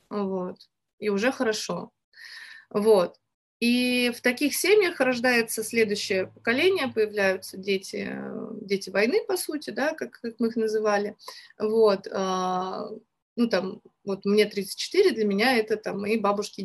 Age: 30-49